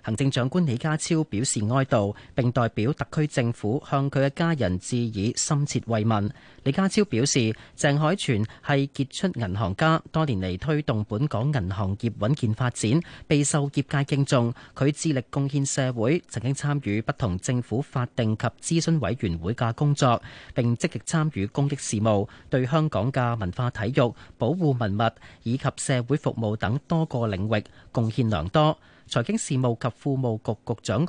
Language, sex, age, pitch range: Chinese, male, 30-49, 110-145 Hz